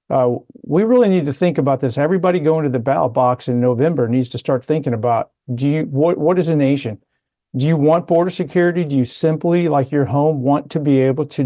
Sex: male